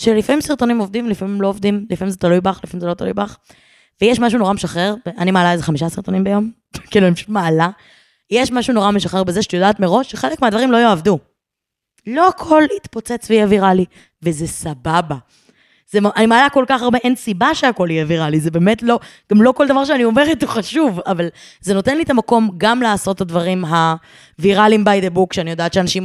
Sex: female